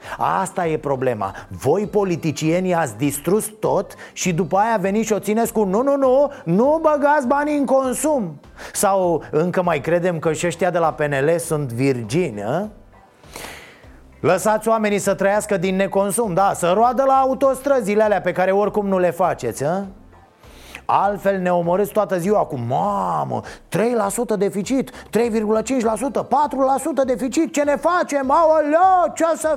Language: Romanian